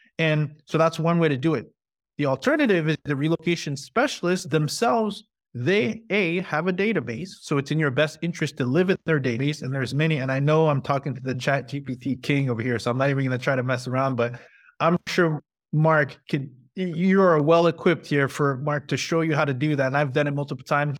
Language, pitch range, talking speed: English, 140-185 Hz, 225 wpm